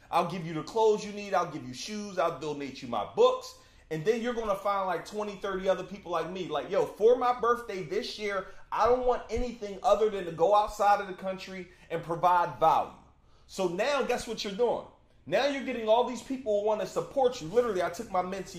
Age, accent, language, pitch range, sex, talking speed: 30-49, American, English, 165-220 Hz, male, 235 wpm